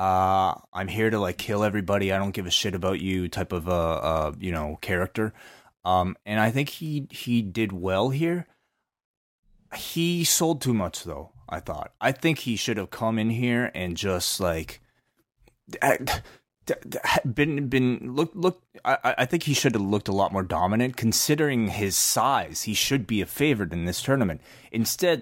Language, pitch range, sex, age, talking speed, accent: English, 95-125 Hz, male, 30-49, 180 wpm, American